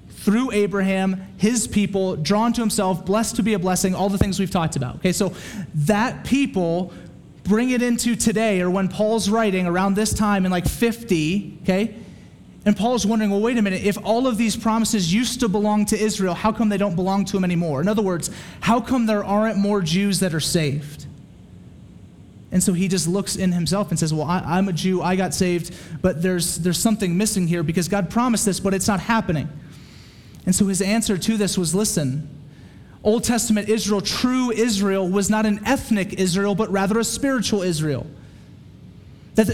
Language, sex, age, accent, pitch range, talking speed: English, male, 30-49, American, 180-215 Hz, 195 wpm